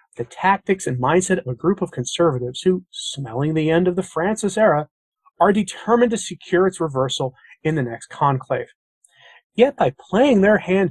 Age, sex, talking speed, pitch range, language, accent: 30-49, male, 175 wpm, 130-185 Hz, English, American